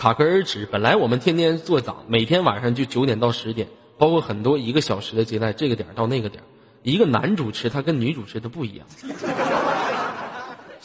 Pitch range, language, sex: 115-185 Hz, Chinese, male